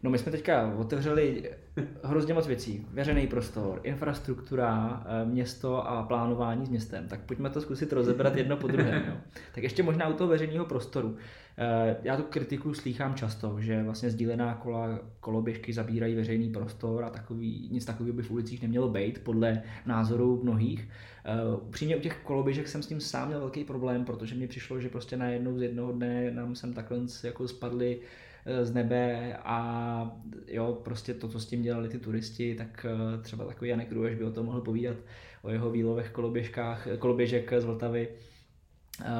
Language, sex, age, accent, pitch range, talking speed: Czech, male, 20-39, native, 115-125 Hz, 170 wpm